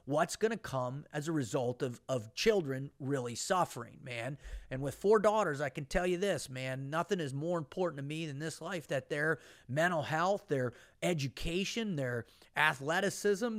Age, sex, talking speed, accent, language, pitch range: 40-59, male, 175 wpm, American, English, 135-180 Hz